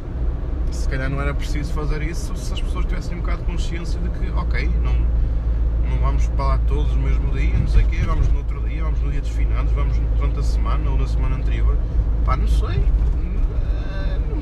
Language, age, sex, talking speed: Portuguese, 20-39, male, 210 wpm